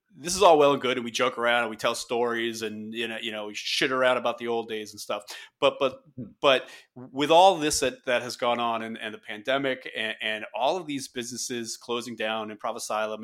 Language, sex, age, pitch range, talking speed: English, male, 30-49, 110-135 Hz, 245 wpm